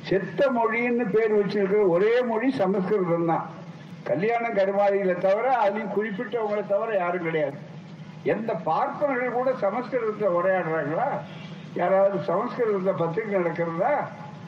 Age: 60-79